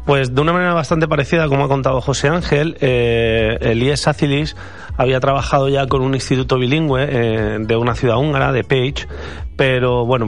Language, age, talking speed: Spanish, 30-49, 180 wpm